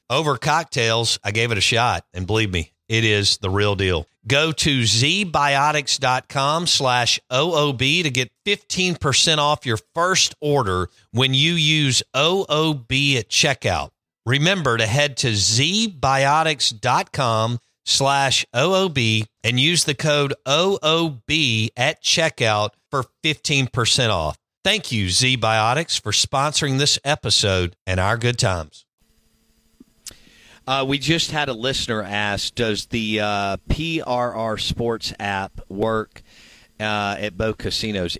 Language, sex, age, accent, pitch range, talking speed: English, male, 50-69, American, 100-135 Hz, 125 wpm